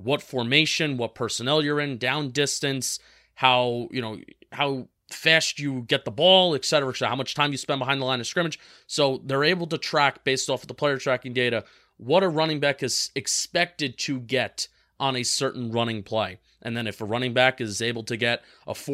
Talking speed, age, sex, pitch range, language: 210 wpm, 30-49, male, 120-145 Hz, English